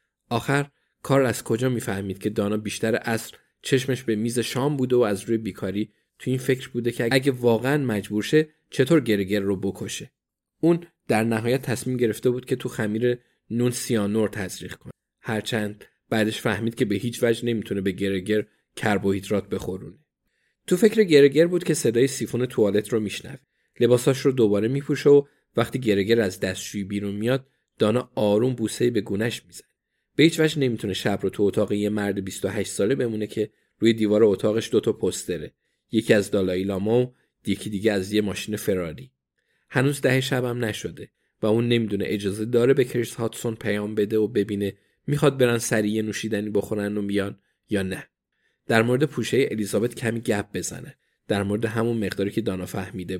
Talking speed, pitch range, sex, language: 165 wpm, 105-125 Hz, male, Persian